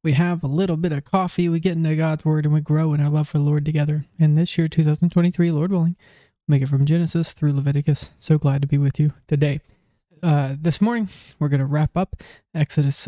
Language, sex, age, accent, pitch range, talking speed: English, male, 20-39, American, 145-160 Hz, 230 wpm